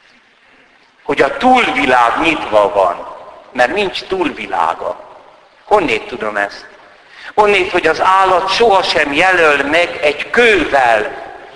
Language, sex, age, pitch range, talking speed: Hungarian, male, 60-79, 140-225 Hz, 105 wpm